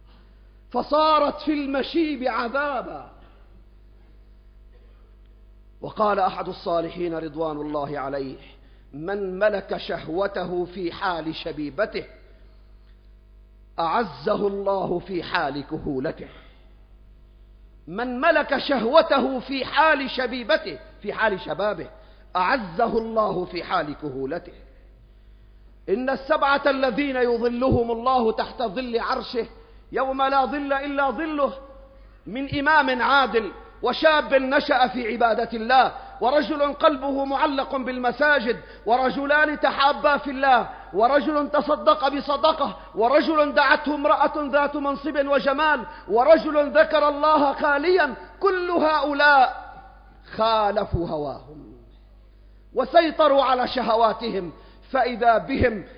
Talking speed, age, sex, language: 90 wpm, 50-69, male, Arabic